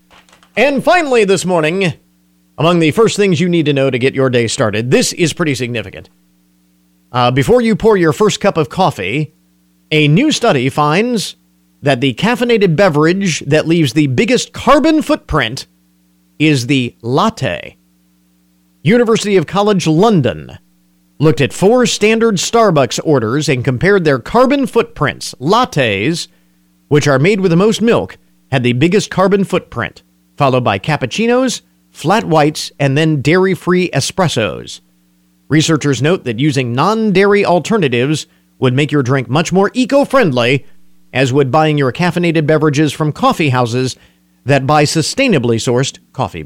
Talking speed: 145 wpm